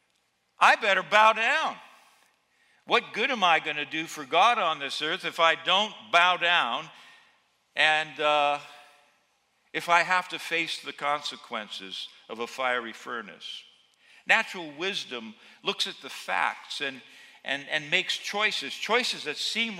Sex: male